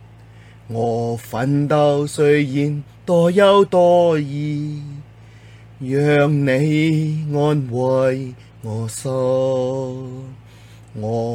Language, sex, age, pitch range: Chinese, male, 30-49, 120-175 Hz